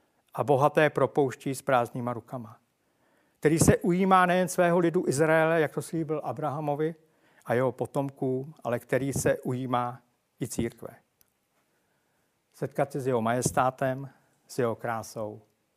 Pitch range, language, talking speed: 130-160 Hz, Czech, 130 wpm